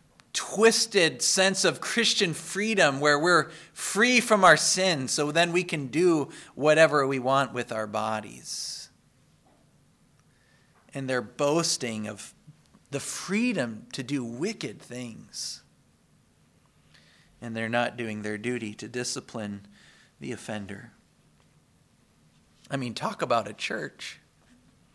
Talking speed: 115 wpm